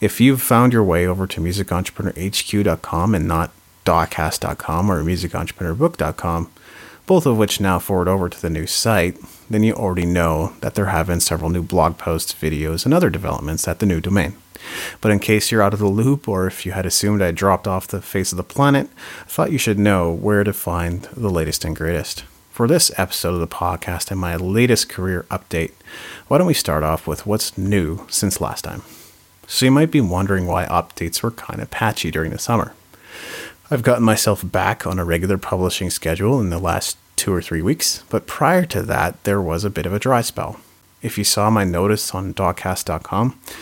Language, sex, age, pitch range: English, male, 30-49, 85-105 Hz